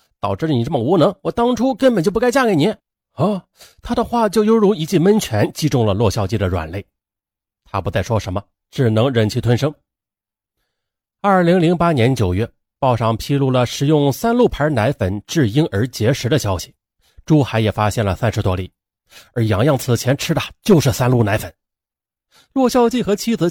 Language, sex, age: Chinese, male, 30-49